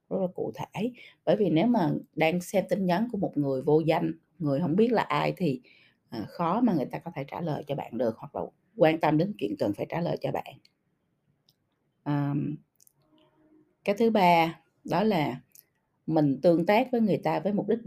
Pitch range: 150-205 Hz